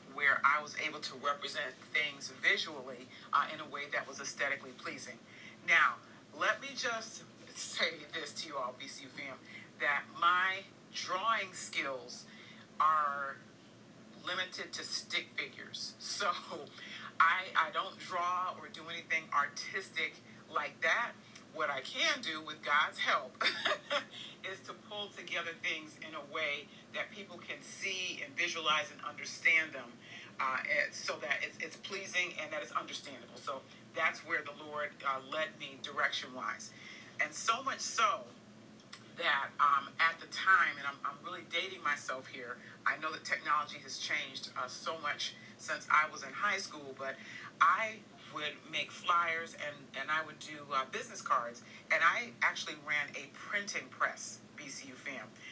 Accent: American